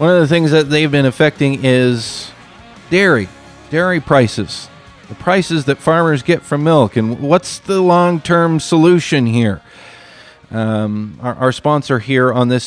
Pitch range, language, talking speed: 120-150 Hz, English, 150 wpm